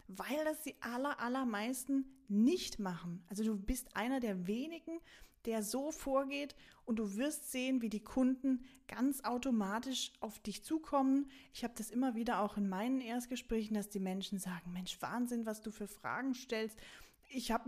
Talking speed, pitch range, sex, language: 165 wpm, 210-265 Hz, female, German